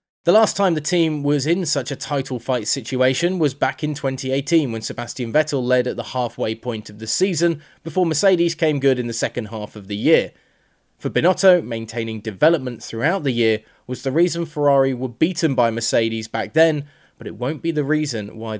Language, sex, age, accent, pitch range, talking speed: English, male, 20-39, British, 115-155 Hz, 200 wpm